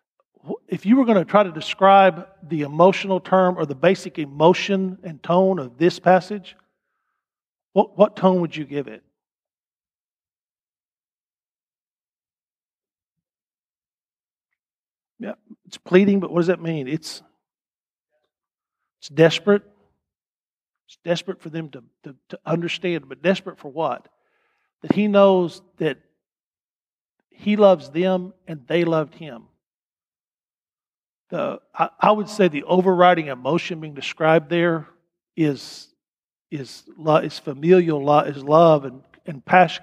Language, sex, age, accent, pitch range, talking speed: English, male, 50-69, American, 155-190 Hz, 120 wpm